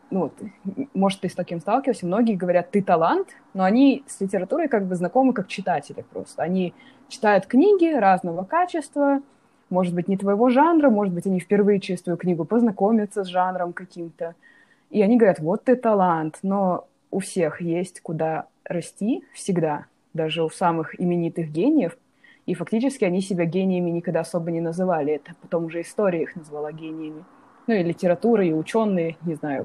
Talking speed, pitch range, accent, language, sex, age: 170 wpm, 175-250 Hz, native, Russian, female, 20-39